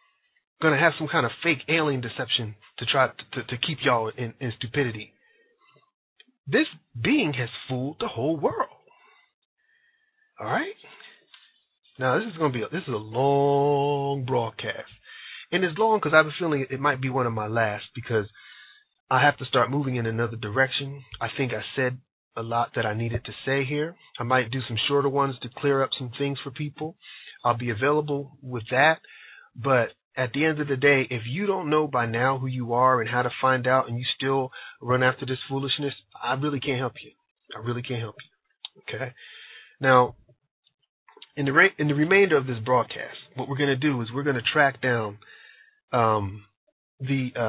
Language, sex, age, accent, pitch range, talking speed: English, male, 40-59, American, 120-150 Hz, 195 wpm